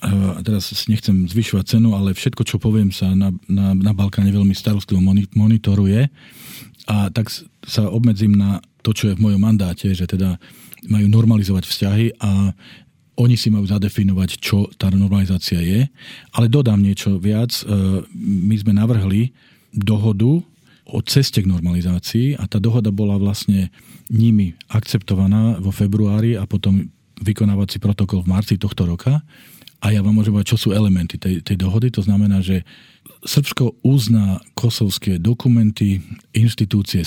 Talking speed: 140 wpm